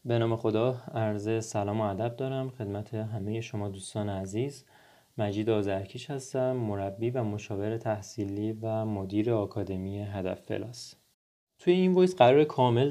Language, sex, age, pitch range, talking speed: Persian, male, 30-49, 110-150 Hz, 140 wpm